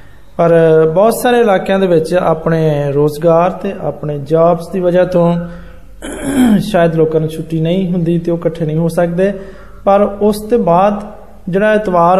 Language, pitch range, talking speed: Hindi, 155-205 Hz, 135 wpm